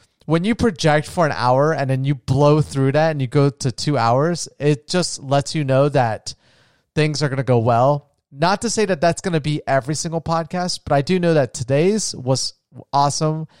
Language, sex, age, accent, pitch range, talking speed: English, male, 30-49, American, 125-155 Hz, 215 wpm